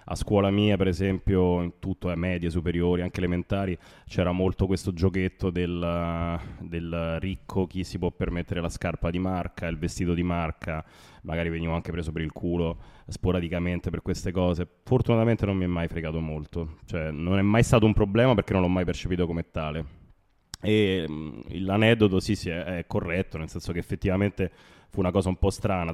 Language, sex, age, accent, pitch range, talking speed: Italian, male, 20-39, native, 85-105 Hz, 185 wpm